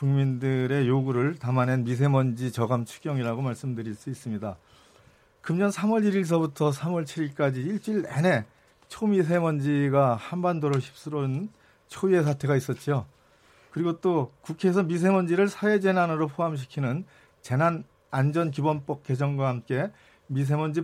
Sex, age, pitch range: male, 40-59, 135-175 Hz